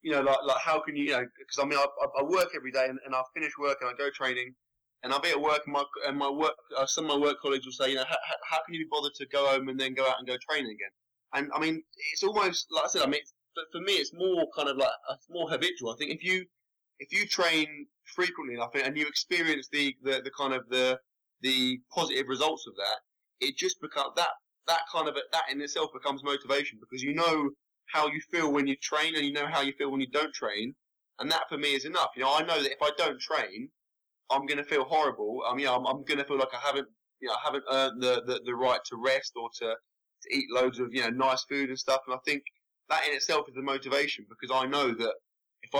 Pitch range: 130-150 Hz